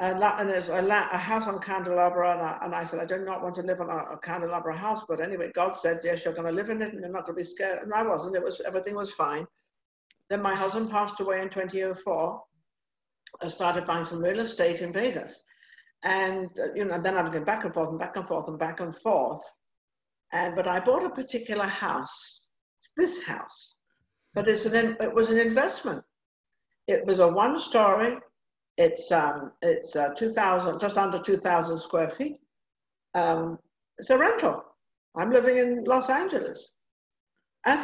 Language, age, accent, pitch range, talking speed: English, 60-79, British, 180-230 Hz, 205 wpm